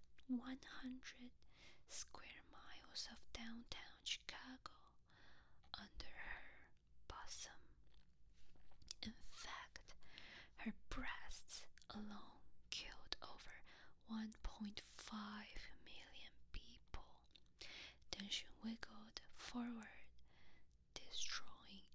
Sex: female